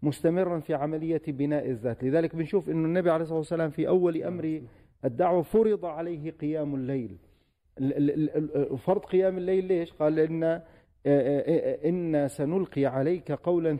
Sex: male